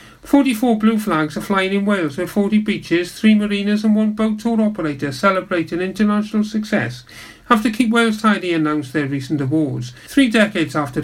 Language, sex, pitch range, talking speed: English, male, 160-215 Hz, 175 wpm